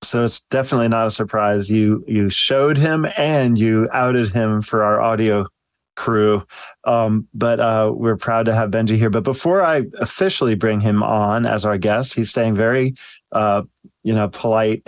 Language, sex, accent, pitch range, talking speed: English, male, American, 110-130 Hz, 180 wpm